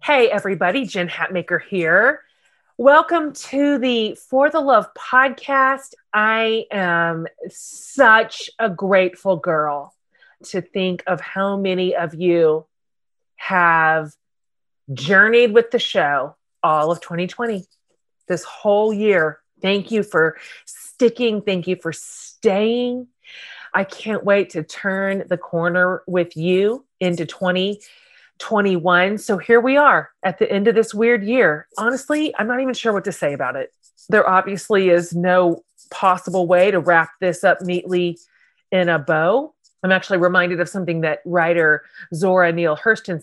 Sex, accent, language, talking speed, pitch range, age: female, American, English, 140 wpm, 175-230 Hz, 30-49